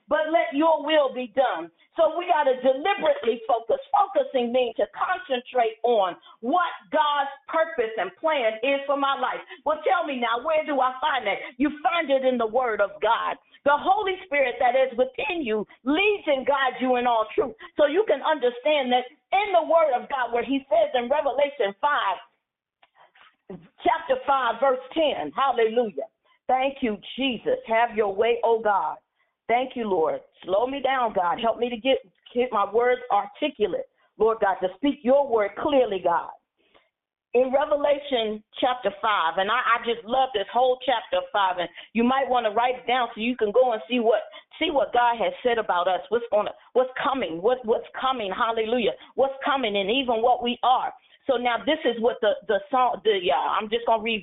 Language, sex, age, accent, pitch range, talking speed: English, female, 50-69, American, 230-295 Hz, 195 wpm